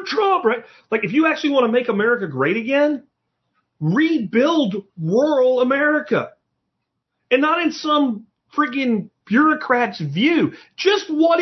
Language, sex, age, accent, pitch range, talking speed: English, male, 40-59, American, 200-295 Hz, 125 wpm